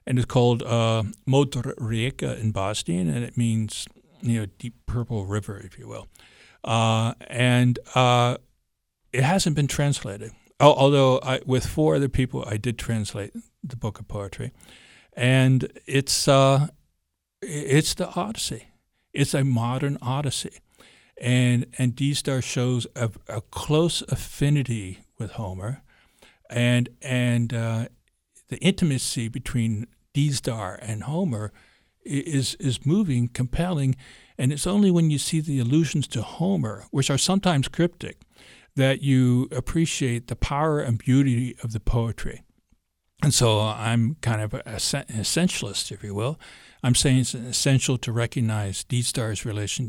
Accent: American